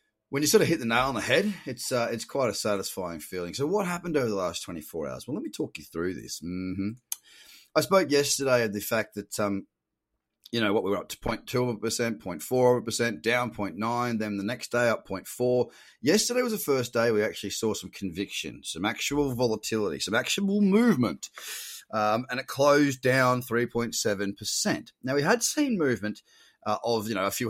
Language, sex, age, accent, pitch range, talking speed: English, male, 30-49, Australian, 100-130 Hz, 200 wpm